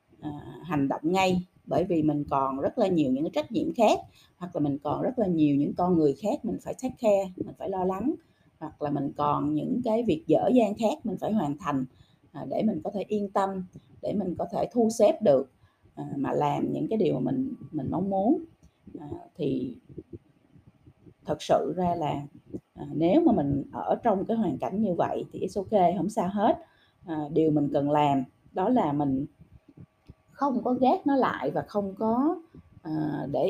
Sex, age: female, 20-39